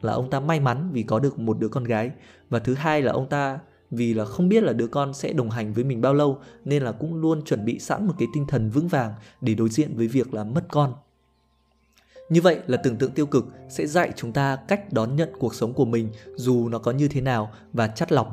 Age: 20-39